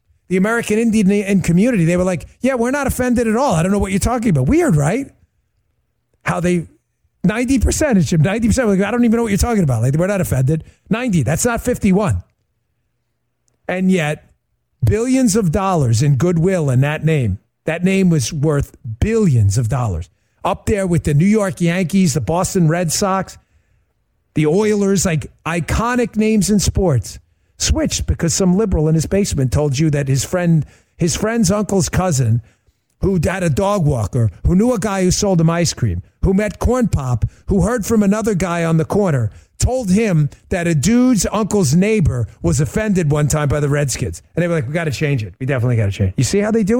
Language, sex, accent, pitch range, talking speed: English, male, American, 135-200 Hz, 195 wpm